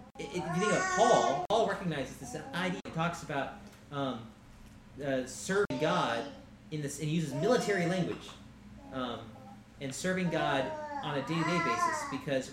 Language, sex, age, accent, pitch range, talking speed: English, male, 30-49, American, 125-165 Hz, 160 wpm